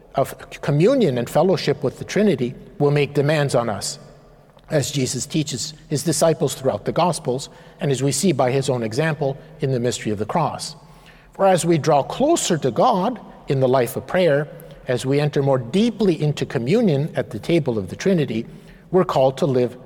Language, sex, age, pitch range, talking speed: English, male, 50-69, 125-165 Hz, 190 wpm